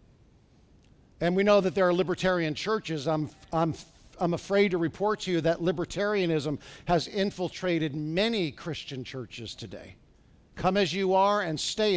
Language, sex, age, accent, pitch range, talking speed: English, male, 50-69, American, 170-220 Hz, 150 wpm